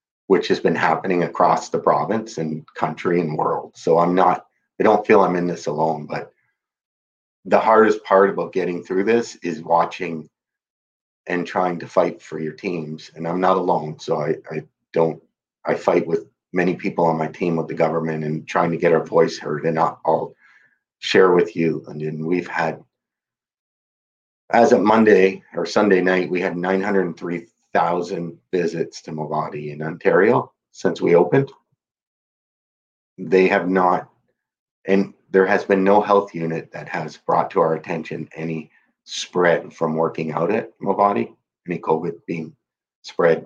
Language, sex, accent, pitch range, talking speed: English, male, American, 80-95 Hz, 165 wpm